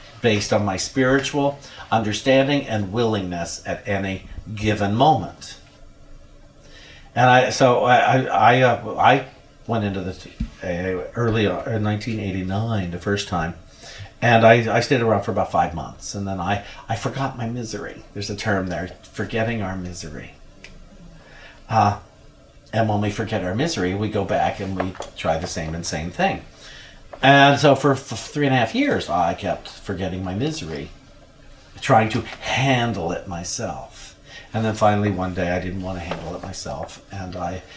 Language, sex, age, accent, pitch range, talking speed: English, male, 50-69, American, 95-130 Hz, 165 wpm